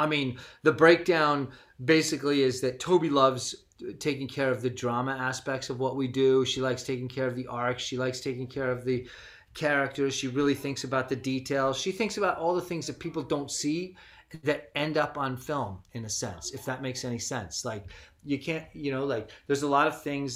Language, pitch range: English, 125-155 Hz